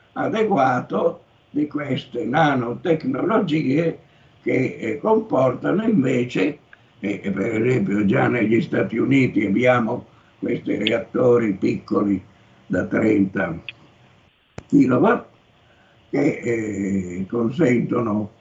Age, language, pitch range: 60-79, Italian, 100-125 Hz